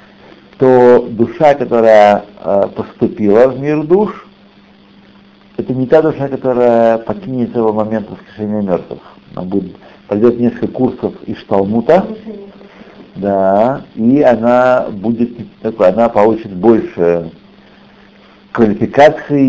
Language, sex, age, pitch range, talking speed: Russian, male, 60-79, 110-185 Hz, 95 wpm